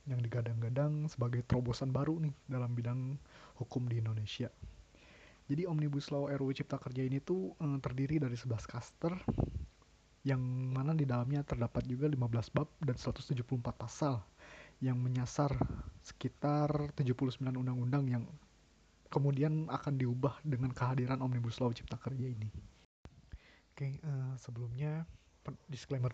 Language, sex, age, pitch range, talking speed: Indonesian, male, 20-39, 120-140 Hz, 130 wpm